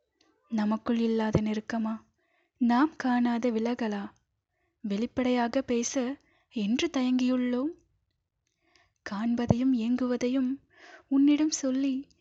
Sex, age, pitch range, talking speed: female, 20-39, 220-270 Hz, 70 wpm